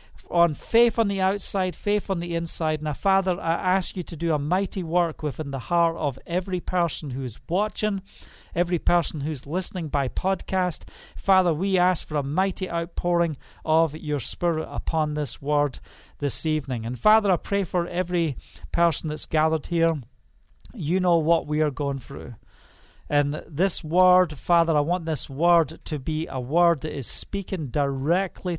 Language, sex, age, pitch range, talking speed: English, male, 50-69, 140-180 Hz, 170 wpm